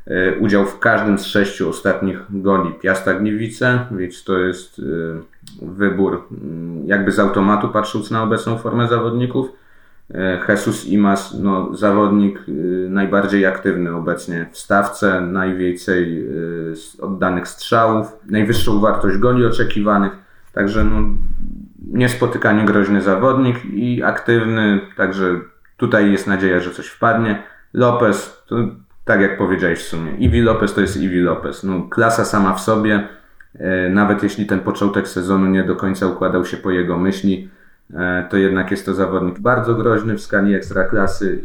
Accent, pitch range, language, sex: native, 95-105 Hz, Polish, male